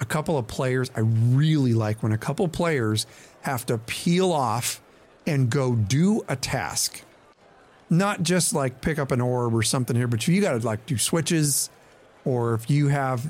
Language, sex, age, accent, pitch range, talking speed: English, male, 40-59, American, 115-140 Hz, 190 wpm